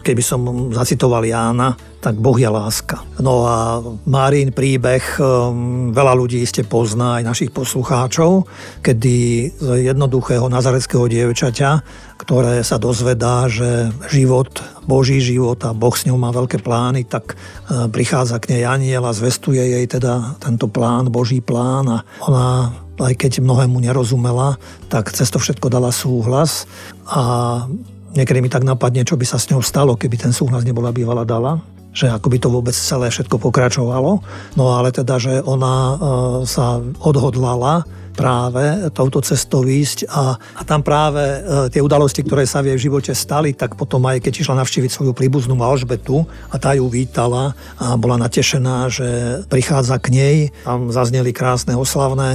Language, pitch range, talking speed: Slovak, 120-135 Hz, 155 wpm